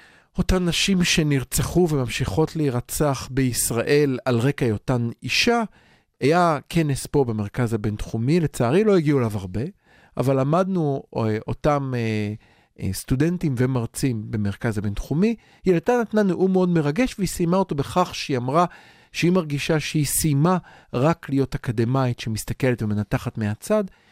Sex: male